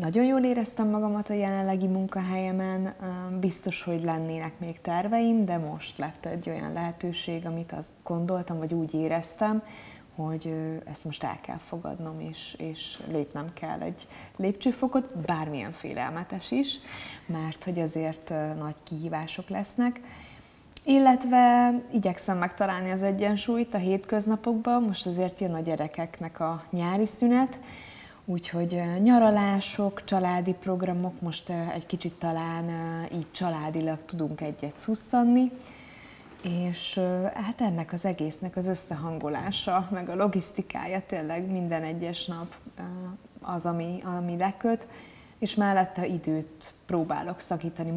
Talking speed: 120 wpm